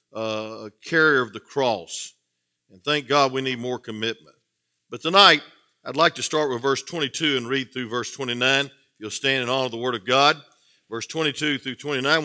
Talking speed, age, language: 190 wpm, 50-69, English